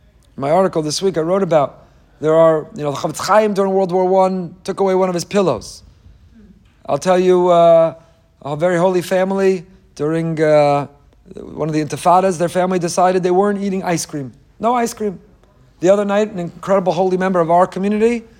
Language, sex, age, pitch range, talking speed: English, male, 40-59, 150-200 Hz, 190 wpm